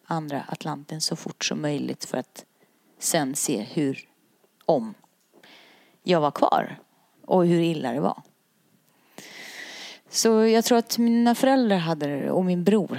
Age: 30-49